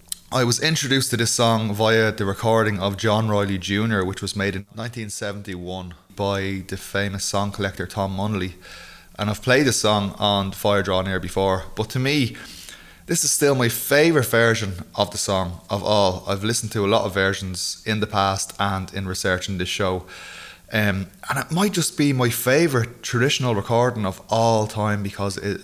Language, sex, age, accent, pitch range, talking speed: English, male, 20-39, Irish, 100-115 Hz, 185 wpm